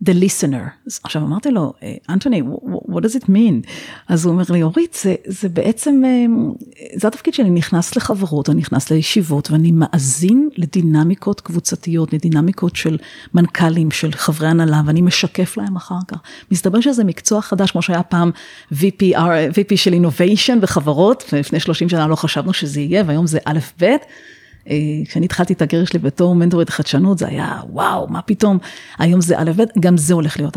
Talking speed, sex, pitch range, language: 170 wpm, female, 160-200 Hz, Hebrew